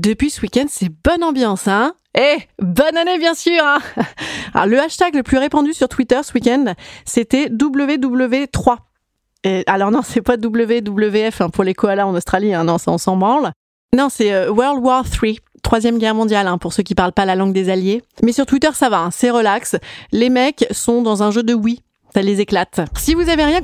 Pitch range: 195-265 Hz